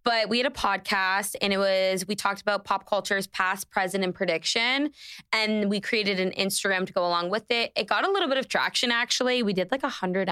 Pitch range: 185-225 Hz